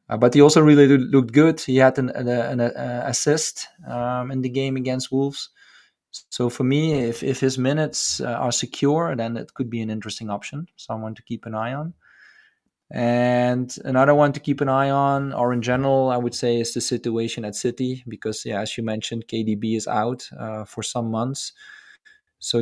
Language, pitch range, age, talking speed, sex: English, 115-130 Hz, 20-39, 190 wpm, male